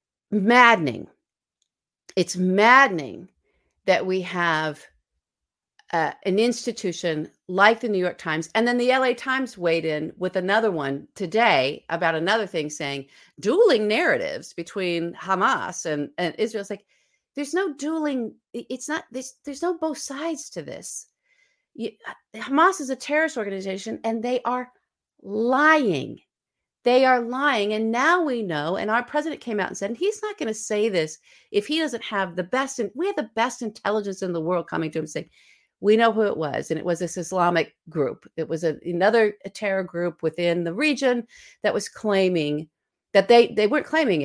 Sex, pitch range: female, 175-260 Hz